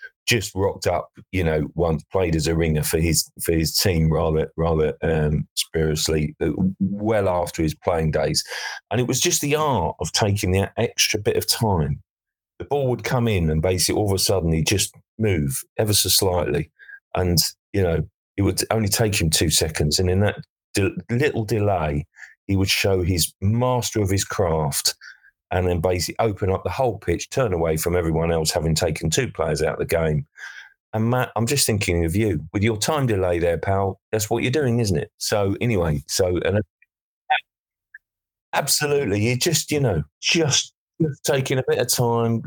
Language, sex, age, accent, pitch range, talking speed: English, male, 40-59, British, 85-120 Hz, 190 wpm